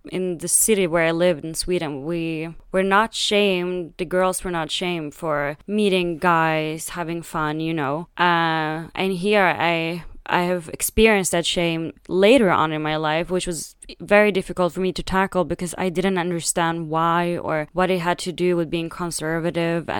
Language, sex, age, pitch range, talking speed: English, female, 20-39, 165-185 Hz, 180 wpm